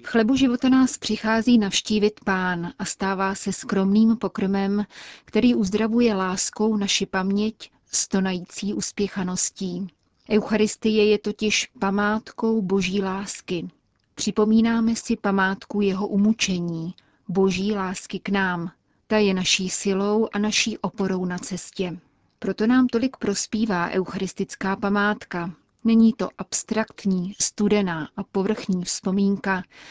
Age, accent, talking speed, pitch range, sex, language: 30-49, native, 110 wpm, 190-220 Hz, female, Czech